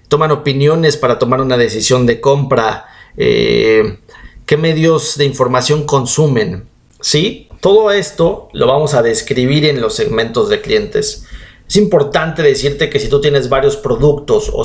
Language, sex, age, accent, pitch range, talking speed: Spanish, male, 40-59, Mexican, 140-200 Hz, 145 wpm